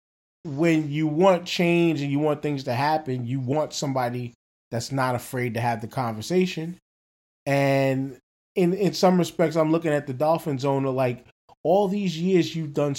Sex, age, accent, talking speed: male, 20-39, American, 170 wpm